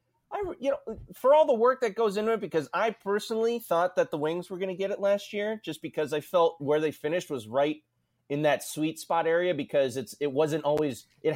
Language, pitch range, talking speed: English, 130-185 Hz, 230 wpm